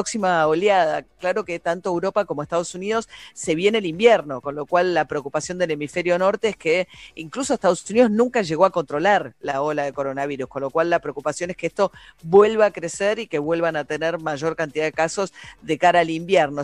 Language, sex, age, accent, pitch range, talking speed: Spanish, female, 40-59, Argentinian, 160-205 Hz, 215 wpm